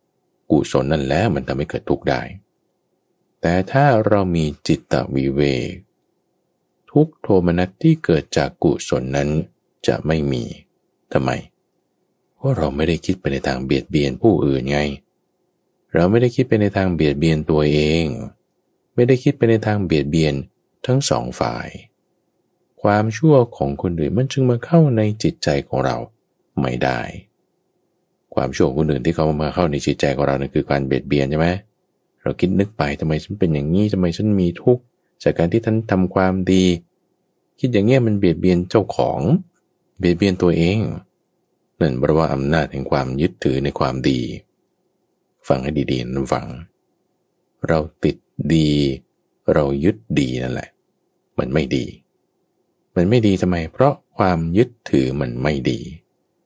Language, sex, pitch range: English, male, 70-110 Hz